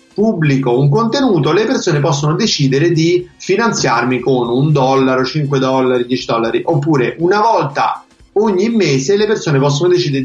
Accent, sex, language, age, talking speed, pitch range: native, male, Italian, 30-49, 145 wpm, 130-170 Hz